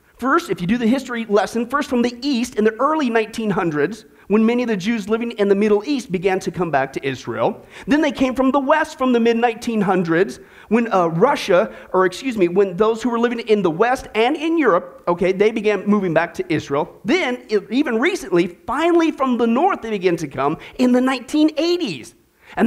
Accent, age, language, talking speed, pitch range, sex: American, 40-59, English, 210 wpm, 200-280 Hz, male